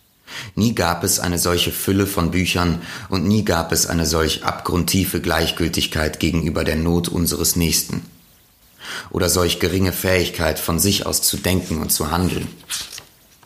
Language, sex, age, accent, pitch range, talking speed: German, male, 30-49, German, 80-95 Hz, 145 wpm